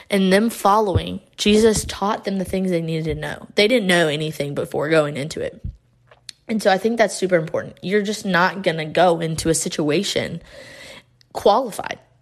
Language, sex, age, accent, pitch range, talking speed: English, female, 20-39, American, 170-200 Hz, 180 wpm